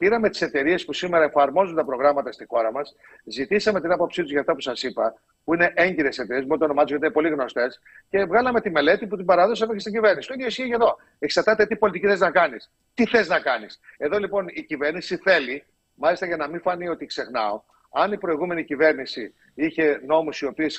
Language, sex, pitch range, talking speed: Greek, male, 150-205 Hz, 210 wpm